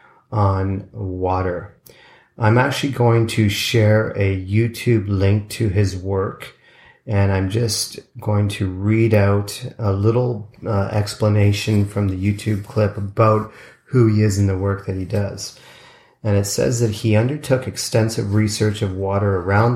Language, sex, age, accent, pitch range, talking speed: English, male, 40-59, American, 100-115 Hz, 150 wpm